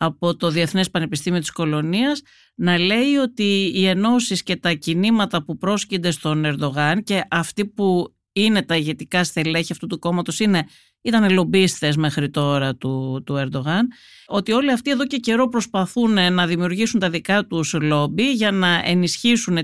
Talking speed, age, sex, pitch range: 155 wpm, 50-69, female, 150-205 Hz